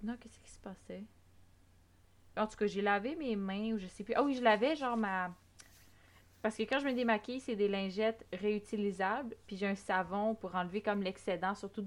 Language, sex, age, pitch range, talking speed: French, female, 20-39, 190-225 Hz, 205 wpm